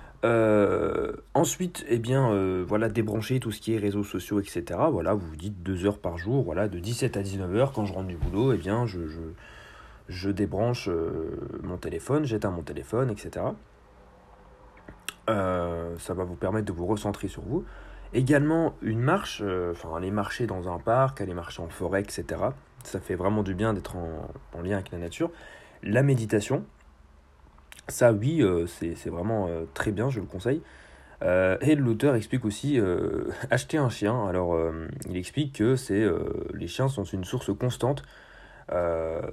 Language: French